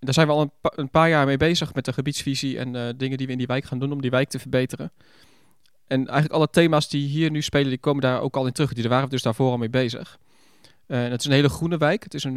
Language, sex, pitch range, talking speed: English, male, 125-145 Hz, 305 wpm